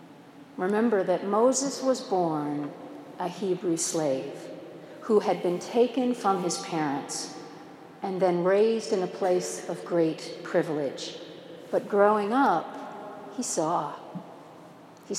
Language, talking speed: English, 120 wpm